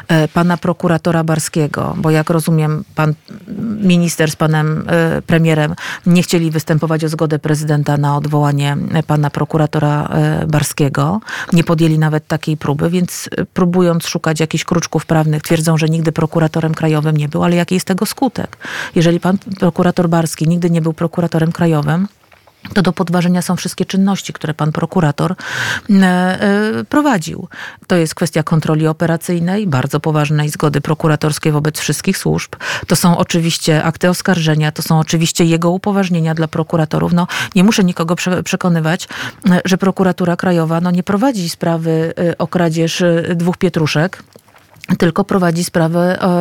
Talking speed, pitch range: 135 wpm, 160-190 Hz